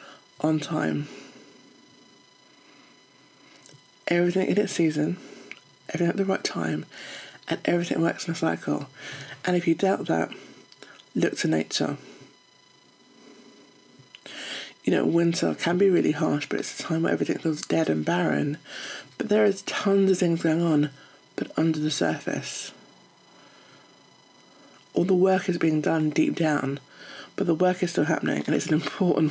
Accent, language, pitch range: British, English, 150-180 Hz